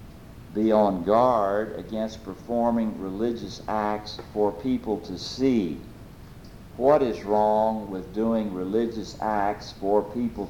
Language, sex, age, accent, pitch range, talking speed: English, male, 60-79, American, 90-115 Hz, 115 wpm